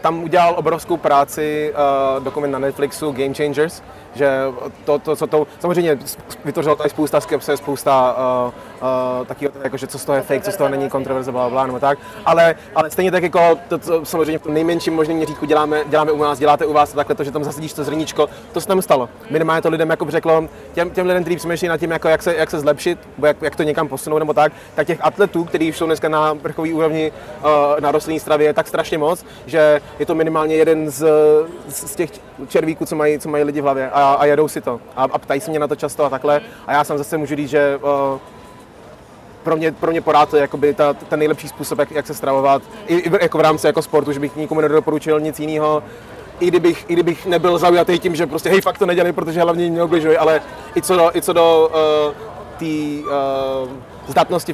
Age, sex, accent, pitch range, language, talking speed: 20-39, male, native, 145-165 Hz, Czech, 225 wpm